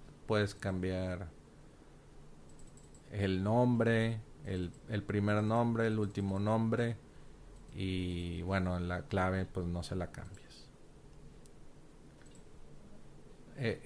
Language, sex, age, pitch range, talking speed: Spanish, male, 40-59, 95-120 Hz, 90 wpm